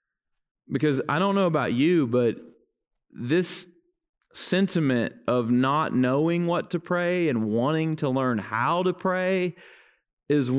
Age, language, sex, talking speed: 30-49, English, male, 130 wpm